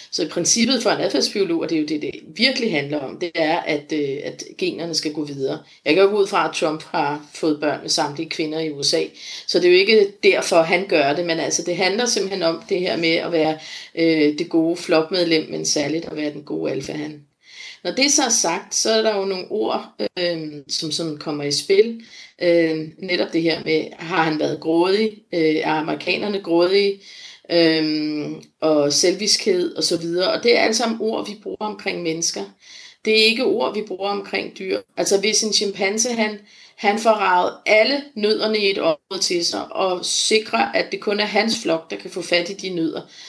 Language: Danish